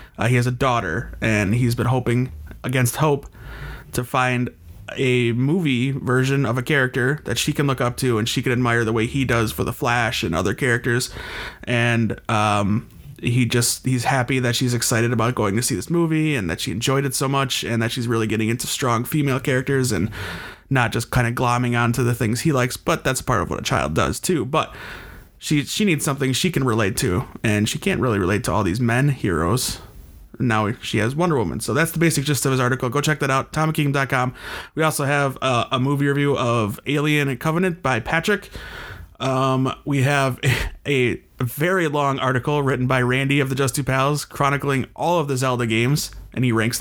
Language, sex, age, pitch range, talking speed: English, male, 30-49, 115-140 Hz, 210 wpm